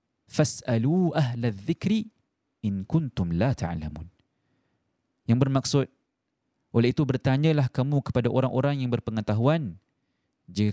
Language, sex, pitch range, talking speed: Malay, male, 125-165 Hz, 100 wpm